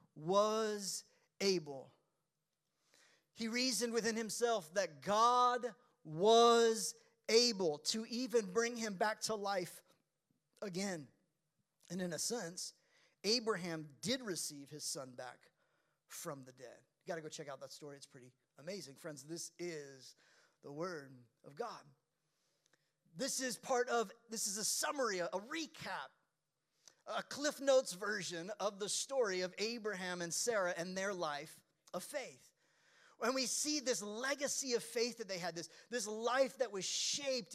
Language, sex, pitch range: English, male, 170-240 Hz